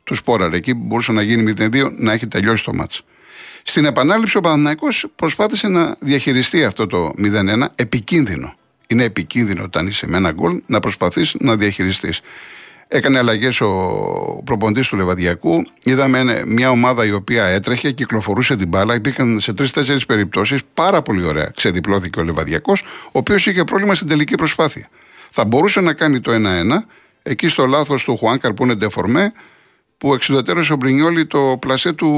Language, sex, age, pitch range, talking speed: Greek, male, 60-79, 105-145 Hz, 160 wpm